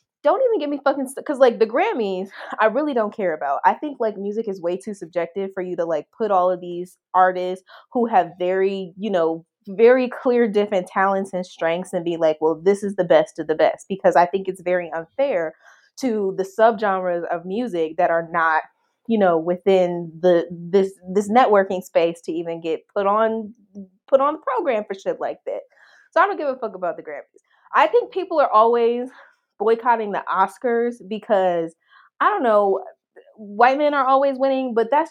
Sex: female